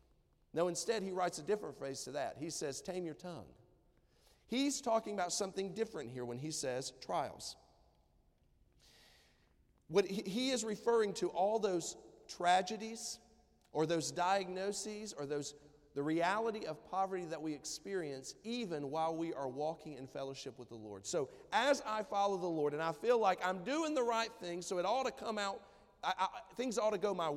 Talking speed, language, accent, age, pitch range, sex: 180 wpm, English, American, 40-59, 130-195 Hz, male